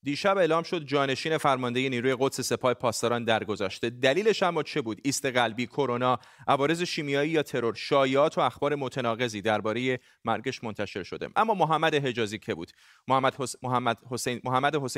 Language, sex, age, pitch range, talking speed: Persian, male, 30-49, 115-145 Hz, 145 wpm